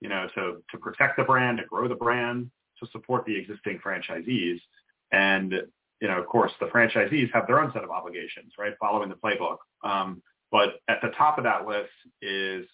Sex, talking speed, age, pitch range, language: male, 200 wpm, 30-49, 95-120 Hz, English